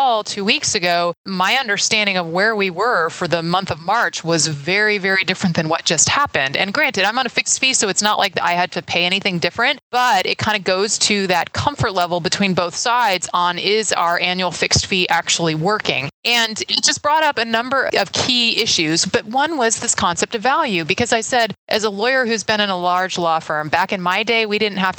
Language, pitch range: English, 180-230 Hz